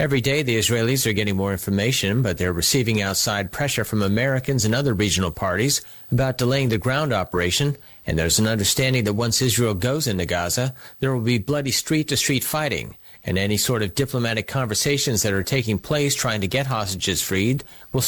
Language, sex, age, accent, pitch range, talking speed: English, male, 40-59, American, 100-135 Hz, 185 wpm